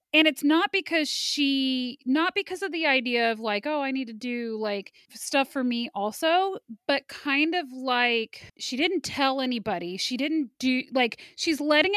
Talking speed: 180 wpm